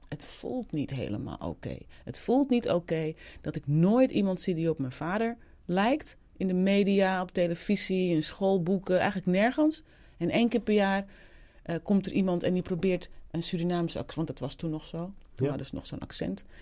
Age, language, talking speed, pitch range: 40-59, Dutch, 200 wpm, 160-200 Hz